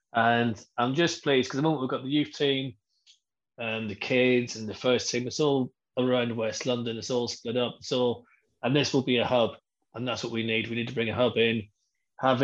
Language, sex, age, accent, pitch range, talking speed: English, male, 20-39, British, 115-130 Hz, 240 wpm